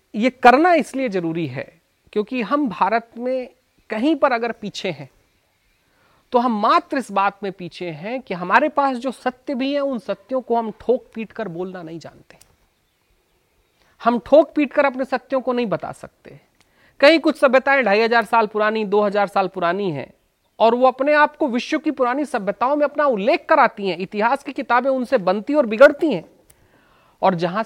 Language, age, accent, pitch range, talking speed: Hindi, 40-59, native, 170-265 Hz, 180 wpm